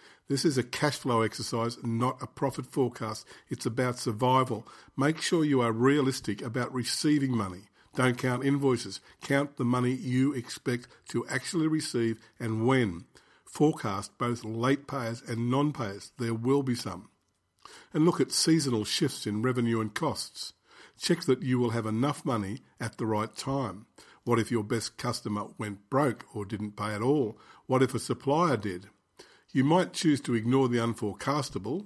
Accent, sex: Australian, male